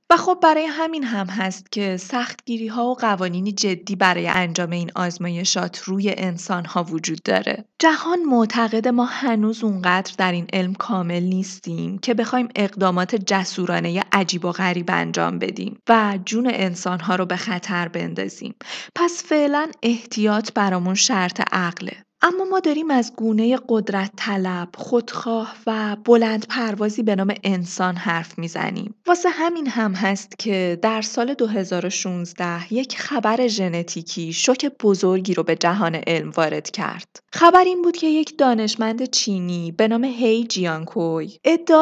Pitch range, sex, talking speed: 185-245 Hz, female, 150 wpm